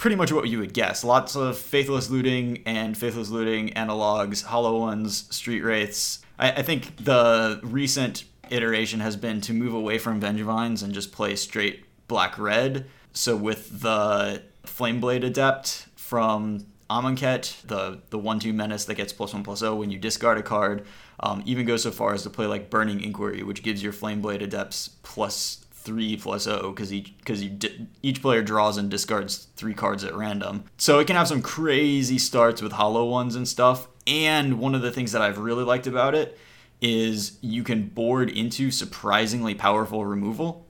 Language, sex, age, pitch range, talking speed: English, male, 20-39, 105-130 Hz, 185 wpm